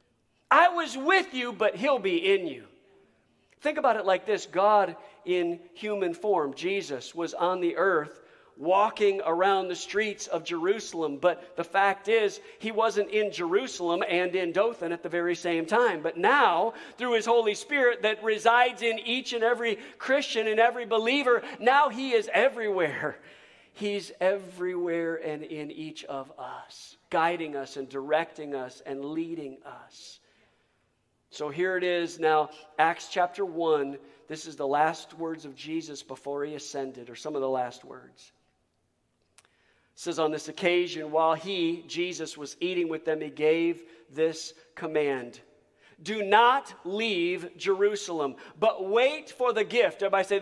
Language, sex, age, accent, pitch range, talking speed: English, male, 50-69, American, 160-225 Hz, 155 wpm